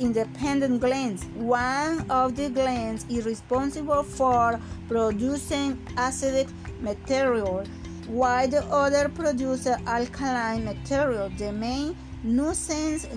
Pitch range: 210-270 Hz